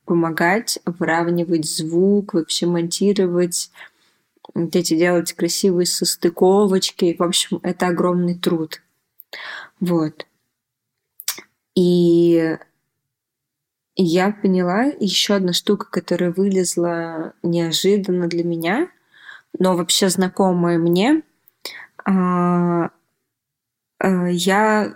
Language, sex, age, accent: Russian, female, 20-39, native